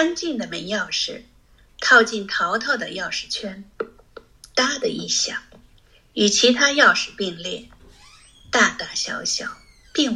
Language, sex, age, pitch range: Chinese, female, 50-69, 205-245 Hz